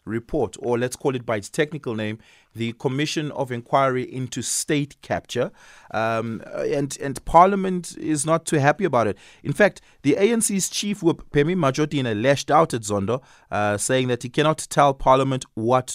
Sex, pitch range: male, 105-170 Hz